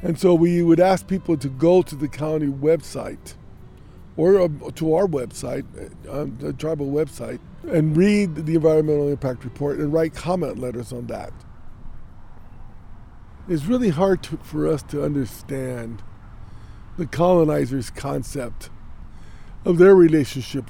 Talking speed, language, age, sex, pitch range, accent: 135 wpm, English, 50-69, male, 115-170 Hz, American